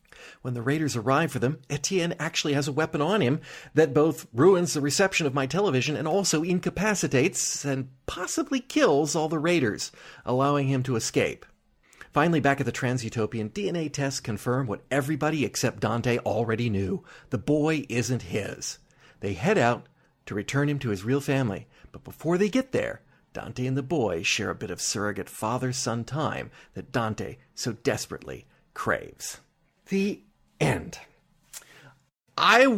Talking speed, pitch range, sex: 155 wpm, 125-155 Hz, male